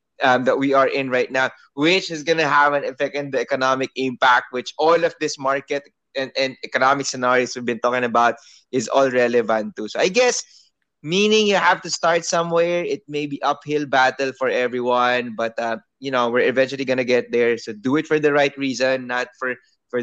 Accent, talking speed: Filipino, 215 wpm